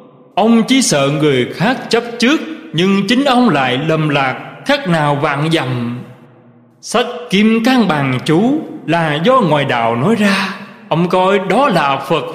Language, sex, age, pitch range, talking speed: Vietnamese, male, 20-39, 145-225 Hz, 160 wpm